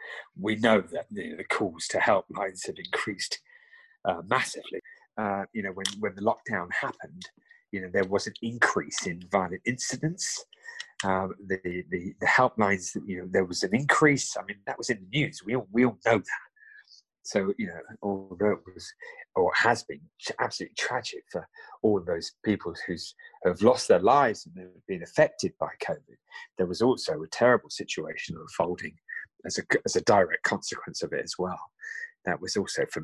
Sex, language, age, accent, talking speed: male, English, 40-59, British, 185 wpm